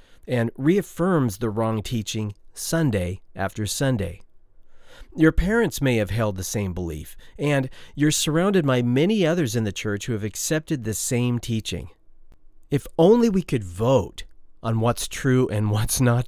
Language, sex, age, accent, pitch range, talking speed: English, male, 40-59, American, 100-145 Hz, 155 wpm